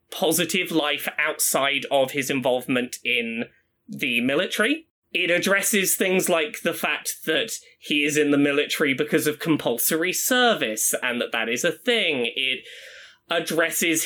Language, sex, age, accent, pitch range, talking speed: English, male, 20-39, British, 140-225 Hz, 140 wpm